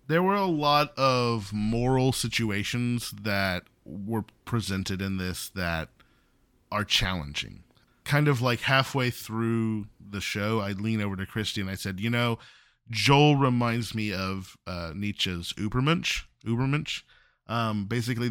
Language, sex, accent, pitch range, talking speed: English, male, American, 95-120 Hz, 135 wpm